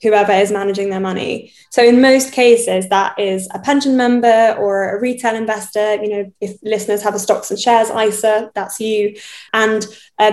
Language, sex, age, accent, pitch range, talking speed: English, female, 10-29, British, 200-225 Hz, 185 wpm